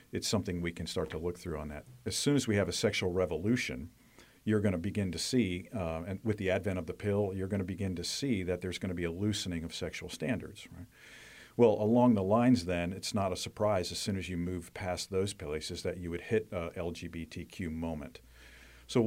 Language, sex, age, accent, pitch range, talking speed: English, male, 50-69, American, 85-100 Hz, 230 wpm